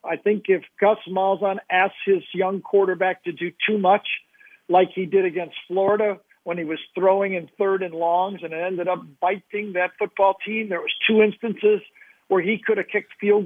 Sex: male